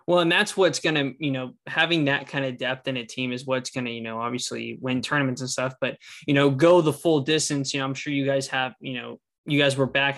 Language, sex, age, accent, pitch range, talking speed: English, male, 10-29, American, 130-155 Hz, 275 wpm